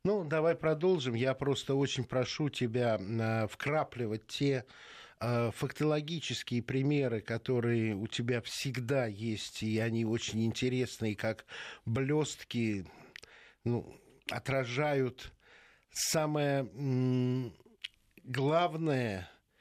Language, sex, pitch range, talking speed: Russian, male, 115-145 Hz, 85 wpm